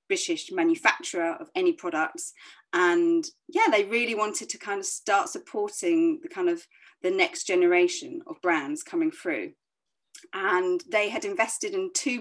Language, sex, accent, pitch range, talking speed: English, female, British, 285-355 Hz, 145 wpm